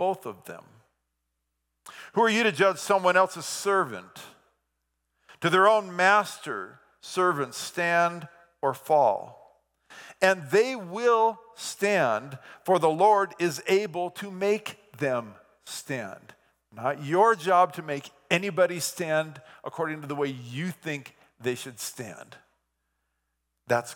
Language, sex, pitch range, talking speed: English, male, 115-185 Hz, 125 wpm